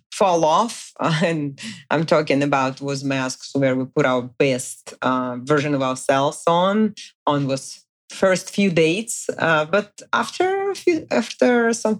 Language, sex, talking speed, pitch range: English, female, 150 wpm, 140-190 Hz